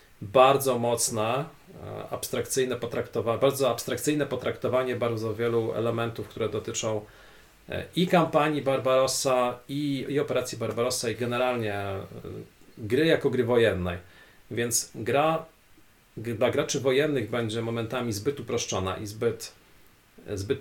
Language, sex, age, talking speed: Polish, male, 40-59, 110 wpm